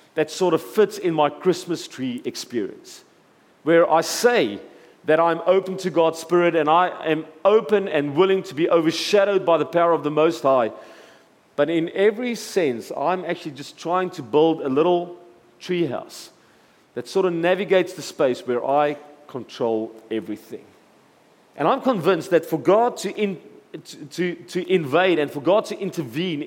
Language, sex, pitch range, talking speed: English, male, 145-185 Hz, 165 wpm